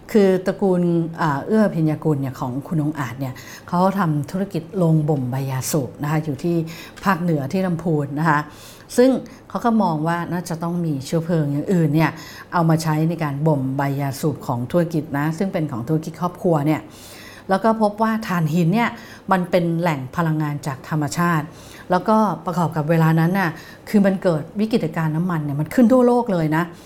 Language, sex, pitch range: English, female, 155-190 Hz